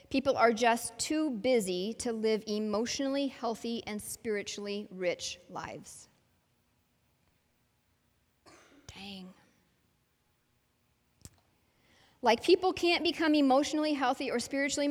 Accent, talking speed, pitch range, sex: American, 90 wpm, 205-270 Hz, female